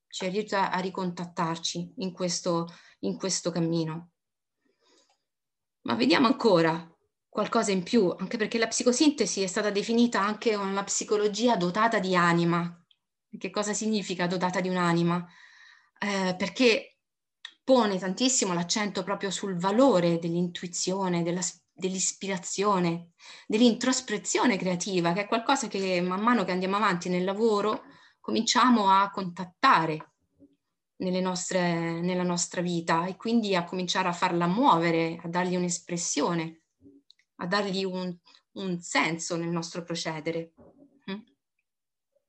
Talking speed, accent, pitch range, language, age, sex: 120 wpm, native, 175-215 Hz, Italian, 20-39, female